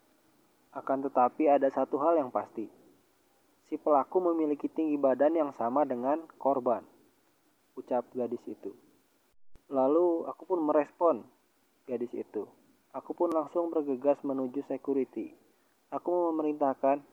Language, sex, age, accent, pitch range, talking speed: Indonesian, male, 20-39, native, 130-155 Hz, 115 wpm